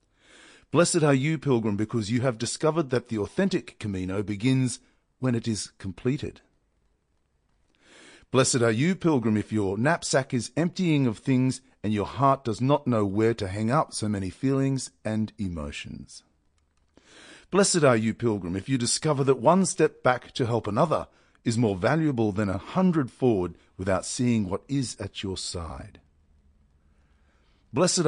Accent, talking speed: Australian, 155 wpm